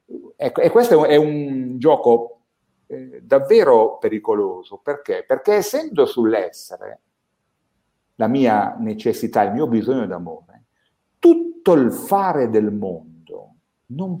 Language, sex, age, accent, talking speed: Italian, male, 50-69, native, 100 wpm